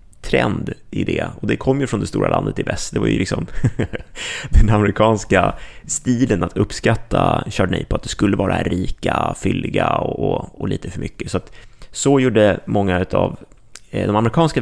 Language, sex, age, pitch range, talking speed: Swedish, male, 30-49, 90-115 Hz, 185 wpm